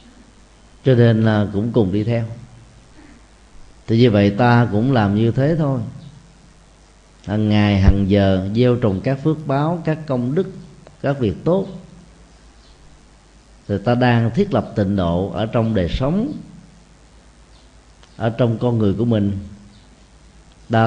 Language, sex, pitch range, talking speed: Vietnamese, male, 100-140 Hz, 140 wpm